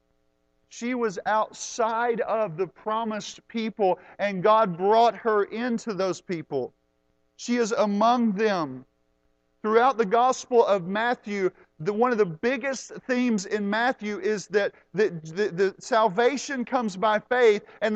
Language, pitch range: English, 210-270 Hz